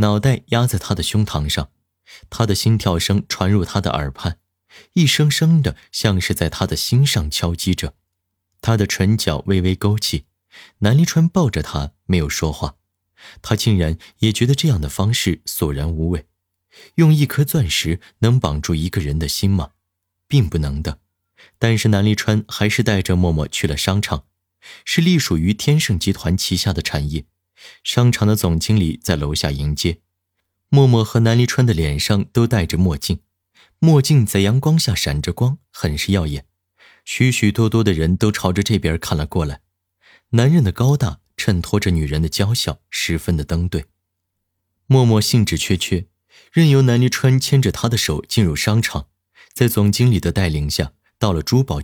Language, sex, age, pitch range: Chinese, male, 20-39, 85-115 Hz